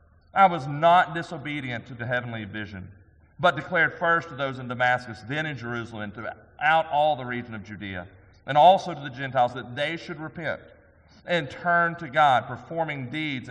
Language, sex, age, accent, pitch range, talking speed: English, male, 40-59, American, 120-165 Hz, 180 wpm